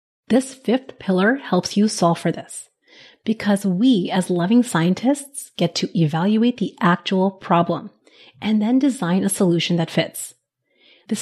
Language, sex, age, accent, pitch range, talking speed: English, female, 30-49, American, 185-245 Hz, 145 wpm